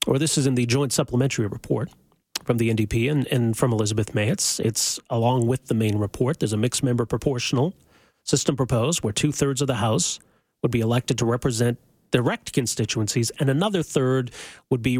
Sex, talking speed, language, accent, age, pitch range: male, 190 wpm, English, American, 40-59, 115-140 Hz